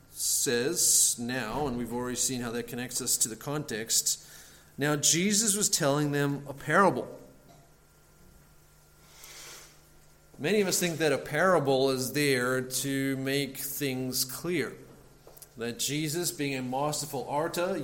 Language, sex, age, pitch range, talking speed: English, male, 40-59, 125-150 Hz, 130 wpm